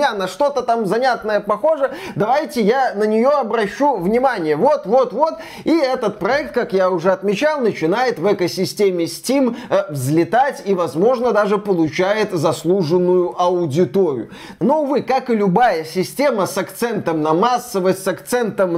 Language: Russian